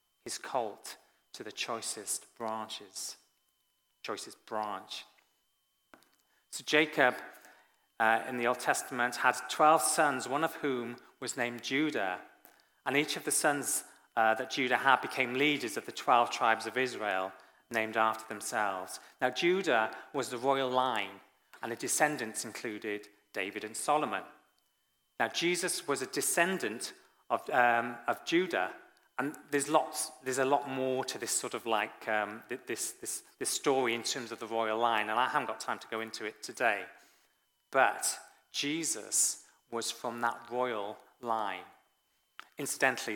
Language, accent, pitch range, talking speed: English, British, 115-150 Hz, 140 wpm